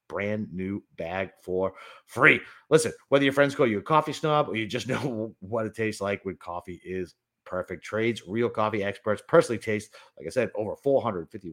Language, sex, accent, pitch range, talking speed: English, male, American, 100-130 Hz, 195 wpm